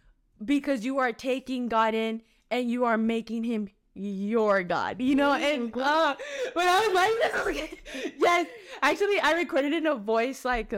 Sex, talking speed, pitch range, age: female, 165 wpm, 230-300 Hz, 20-39